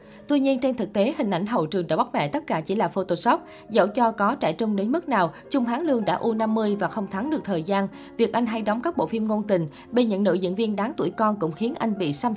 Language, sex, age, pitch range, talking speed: Vietnamese, female, 20-39, 185-235 Hz, 280 wpm